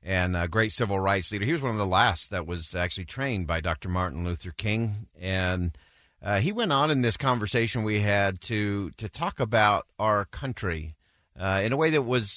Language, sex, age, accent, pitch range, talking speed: English, male, 50-69, American, 90-125 Hz, 210 wpm